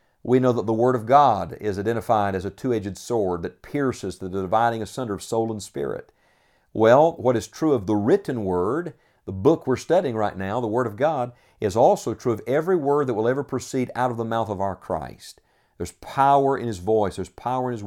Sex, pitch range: male, 100-130 Hz